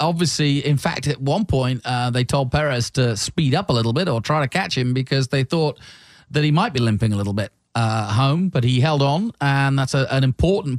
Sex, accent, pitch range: male, British, 120-160 Hz